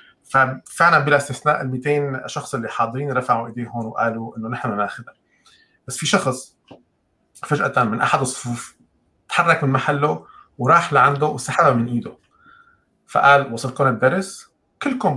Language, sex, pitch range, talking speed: Arabic, male, 120-150 Hz, 125 wpm